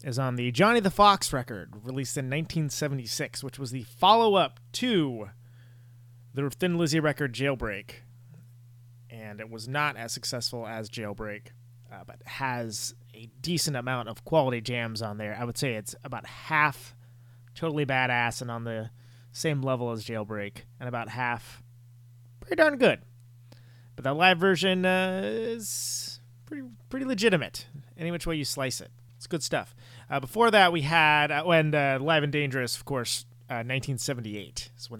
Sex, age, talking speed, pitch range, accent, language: male, 30-49, 165 wpm, 120-160 Hz, American, English